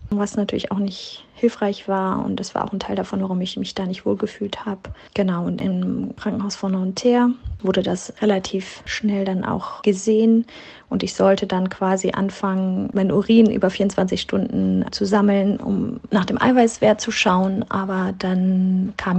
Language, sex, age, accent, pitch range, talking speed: German, female, 30-49, German, 190-215 Hz, 175 wpm